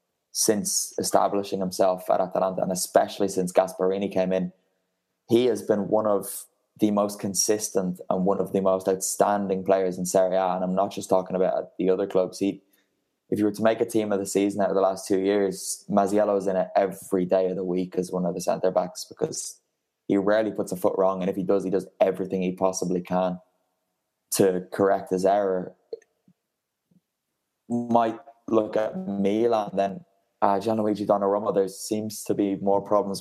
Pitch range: 95-105 Hz